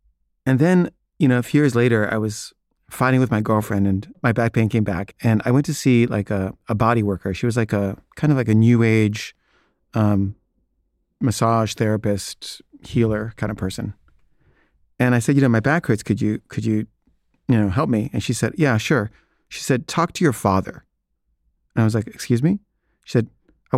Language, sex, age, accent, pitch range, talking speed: English, male, 30-49, American, 105-130 Hz, 210 wpm